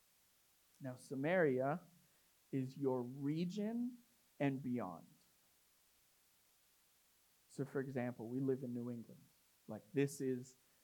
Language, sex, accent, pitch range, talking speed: English, male, American, 140-205 Hz, 100 wpm